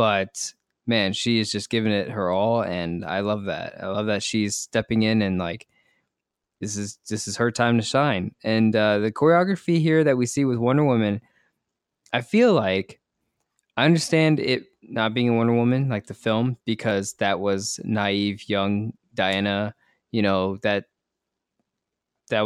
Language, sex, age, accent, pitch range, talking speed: English, male, 20-39, American, 100-125 Hz, 170 wpm